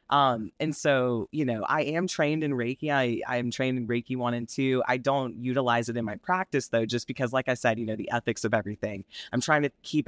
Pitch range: 110-135 Hz